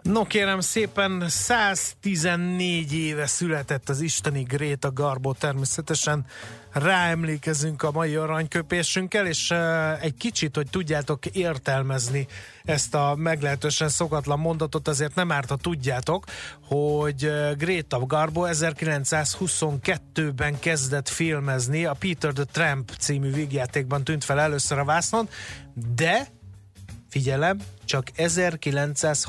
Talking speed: 105 wpm